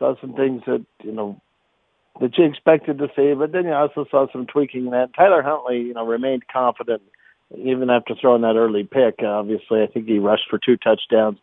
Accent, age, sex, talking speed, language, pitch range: American, 50-69, male, 205 wpm, English, 110-130 Hz